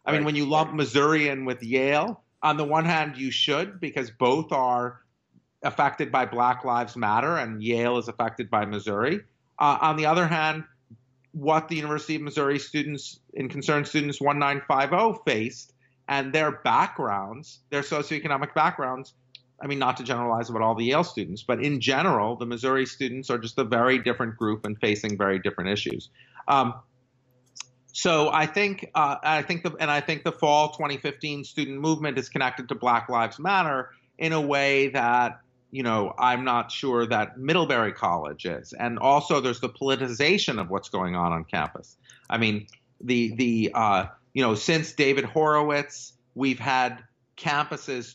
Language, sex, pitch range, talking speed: English, male, 120-150 Hz, 170 wpm